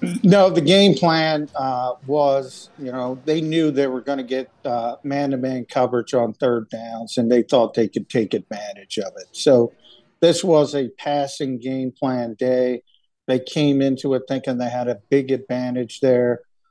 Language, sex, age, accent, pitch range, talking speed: English, male, 50-69, American, 125-145 Hz, 170 wpm